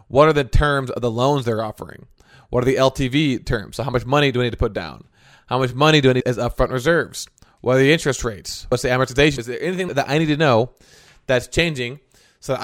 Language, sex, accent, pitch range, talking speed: English, male, American, 120-135 Hz, 250 wpm